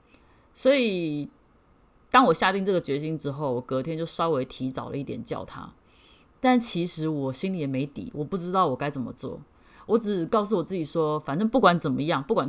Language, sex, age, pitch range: Chinese, female, 30-49, 145-205 Hz